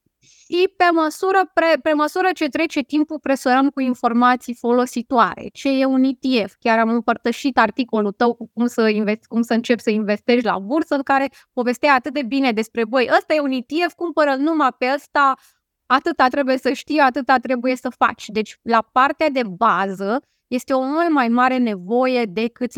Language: Romanian